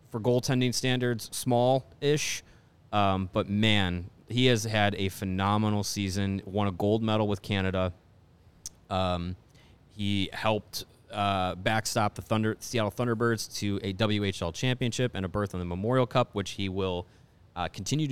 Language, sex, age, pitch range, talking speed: English, male, 30-49, 95-110 Hz, 145 wpm